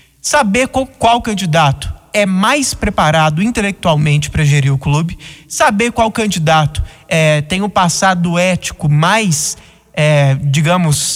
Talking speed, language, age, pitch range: 125 wpm, Portuguese, 20-39, 170-240 Hz